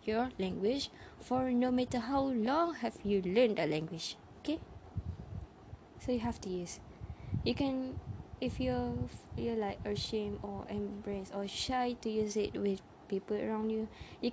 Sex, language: female, English